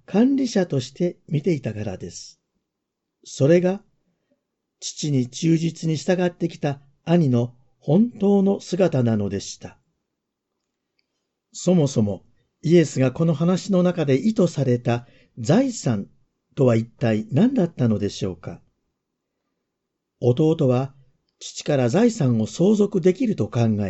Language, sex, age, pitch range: Japanese, male, 50-69, 125-185 Hz